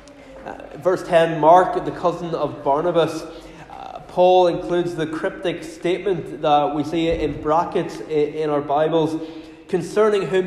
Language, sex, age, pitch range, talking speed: English, male, 20-39, 150-180 Hz, 140 wpm